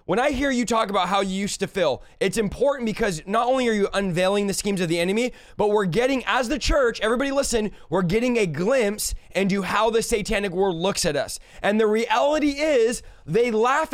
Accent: American